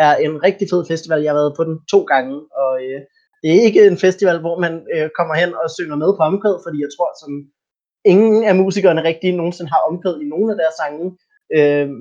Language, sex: Danish, male